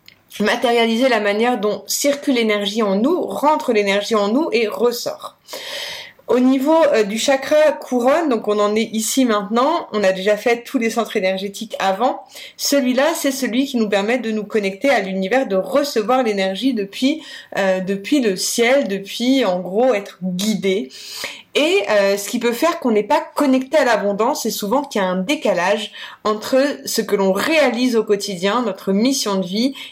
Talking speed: 180 wpm